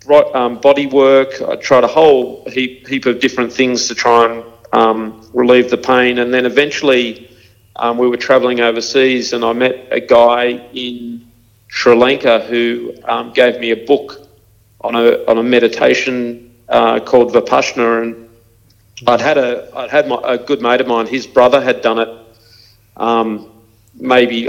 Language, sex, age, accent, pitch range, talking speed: English, male, 40-59, Australian, 115-125 Hz, 165 wpm